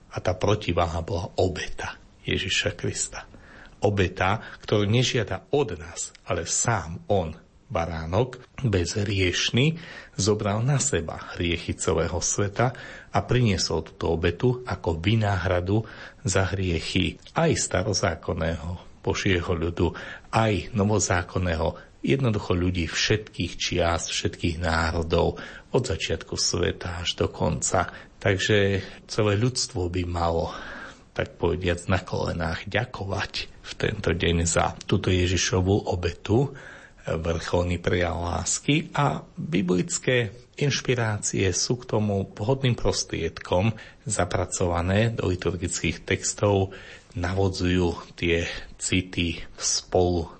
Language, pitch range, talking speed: Slovak, 85-110 Hz, 100 wpm